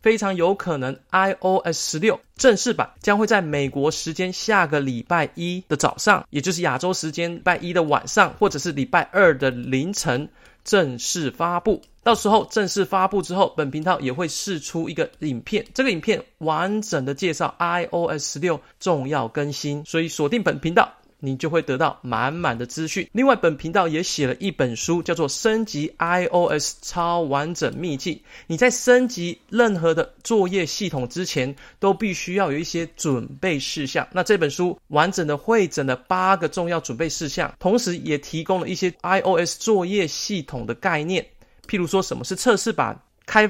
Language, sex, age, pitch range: Chinese, male, 20-39, 150-195 Hz